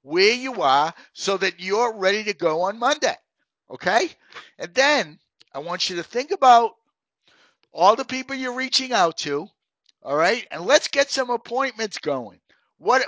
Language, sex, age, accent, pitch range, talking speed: English, male, 60-79, American, 210-265 Hz, 165 wpm